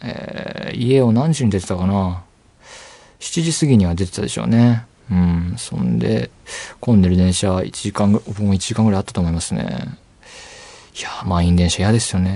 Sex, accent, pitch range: male, native, 95-150 Hz